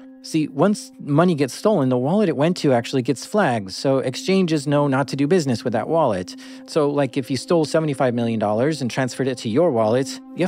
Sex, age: male, 40-59